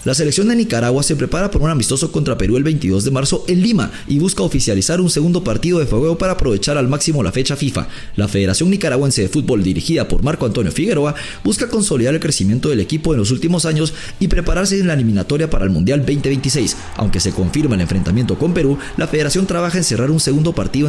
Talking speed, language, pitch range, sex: 220 wpm, English, 115-165 Hz, male